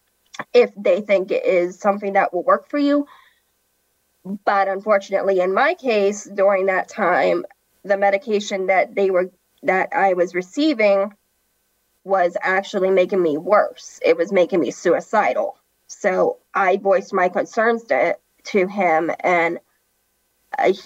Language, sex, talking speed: English, female, 140 wpm